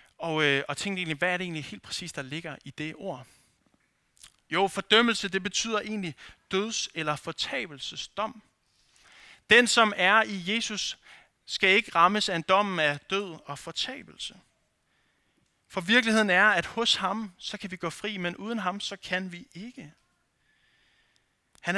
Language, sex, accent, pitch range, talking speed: Danish, male, native, 155-205 Hz, 155 wpm